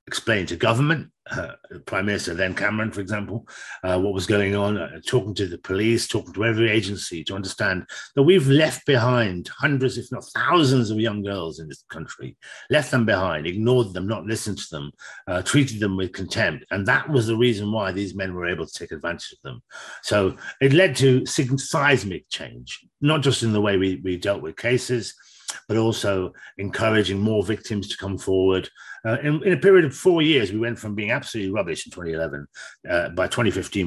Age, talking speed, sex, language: 50-69, 200 wpm, male, English